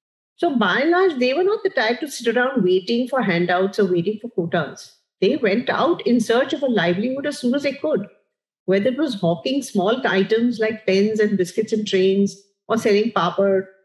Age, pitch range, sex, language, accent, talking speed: 50-69, 200-260 Hz, female, English, Indian, 205 wpm